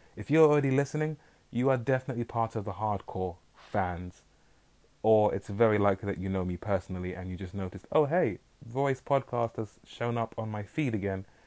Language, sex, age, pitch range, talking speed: English, male, 20-39, 95-115 Hz, 190 wpm